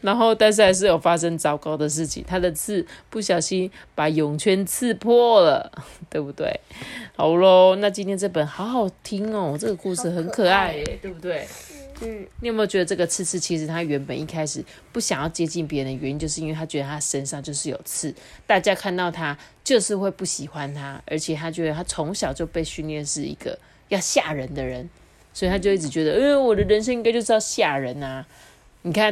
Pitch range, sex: 150-200 Hz, female